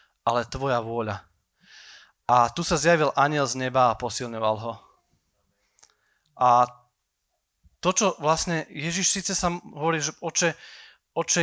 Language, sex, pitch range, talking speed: Slovak, male, 135-185 Hz, 125 wpm